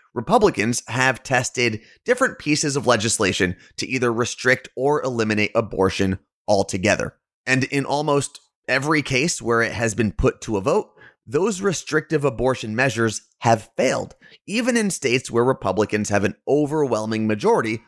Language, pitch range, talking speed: English, 110-150 Hz, 140 wpm